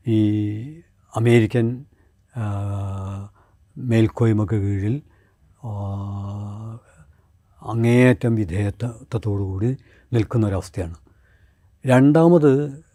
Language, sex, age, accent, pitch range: Malayalam, male, 60-79, native, 100-125 Hz